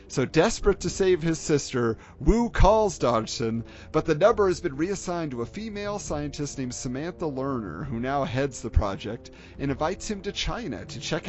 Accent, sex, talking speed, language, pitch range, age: American, male, 180 wpm, English, 115-170 Hz, 40-59